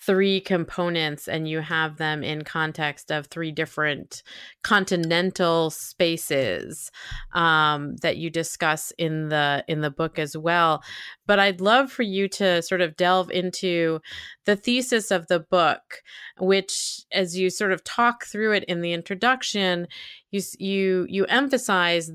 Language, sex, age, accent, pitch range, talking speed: English, female, 30-49, American, 160-185 Hz, 145 wpm